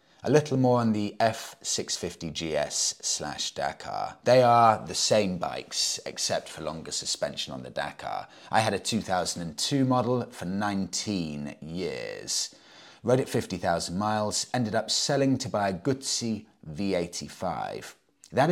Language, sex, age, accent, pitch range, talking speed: English, male, 30-49, British, 95-120 Hz, 135 wpm